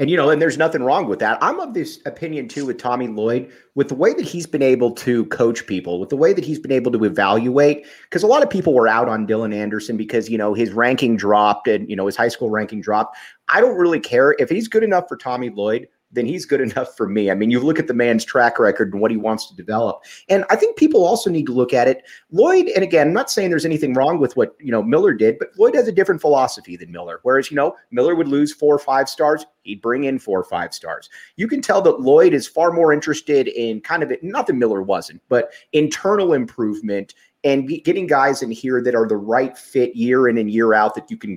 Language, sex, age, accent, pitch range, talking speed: English, male, 30-49, American, 115-165 Hz, 260 wpm